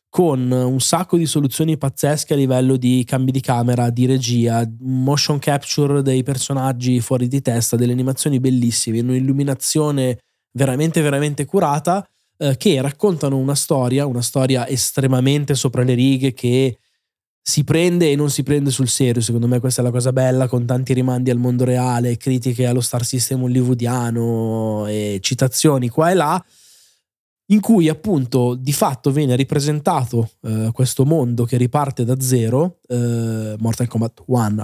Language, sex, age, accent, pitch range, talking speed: Italian, male, 20-39, native, 125-145 Hz, 155 wpm